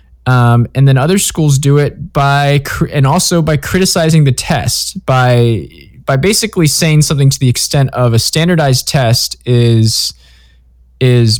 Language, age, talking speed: English, 20-39, 145 wpm